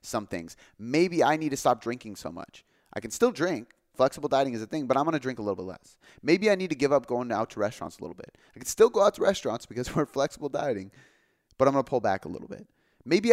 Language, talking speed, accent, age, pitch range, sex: English, 270 wpm, American, 30-49, 120-165 Hz, male